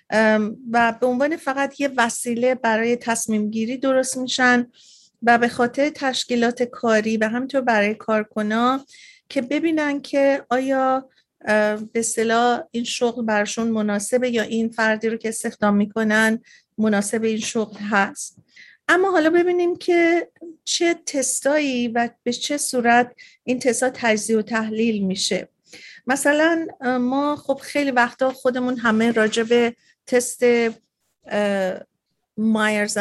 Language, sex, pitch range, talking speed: Persian, female, 215-250 Hz, 120 wpm